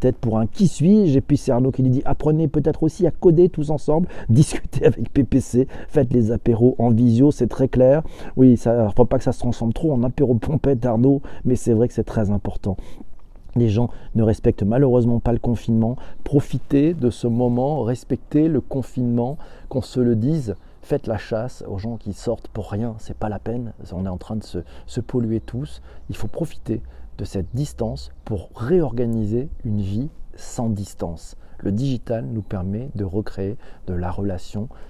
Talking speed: 195 wpm